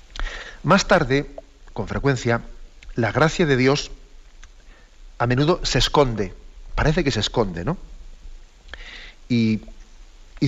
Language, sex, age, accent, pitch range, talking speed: Spanish, male, 40-59, Spanish, 115-145 Hz, 110 wpm